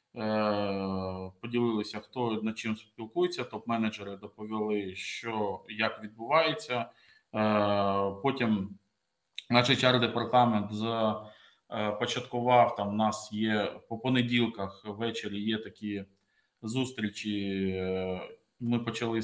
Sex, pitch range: male, 100-120 Hz